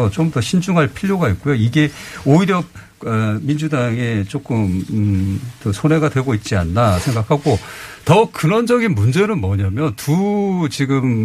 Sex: male